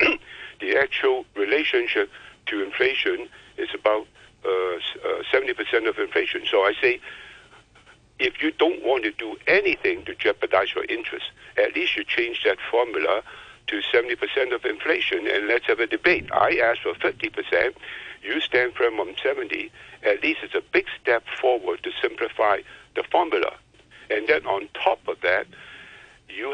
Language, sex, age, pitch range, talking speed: English, male, 60-79, 360-445 Hz, 150 wpm